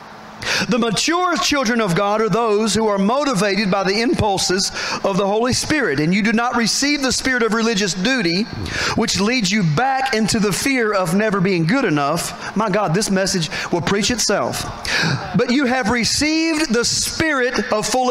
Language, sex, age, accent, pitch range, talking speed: English, male, 40-59, American, 195-250 Hz, 180 wpm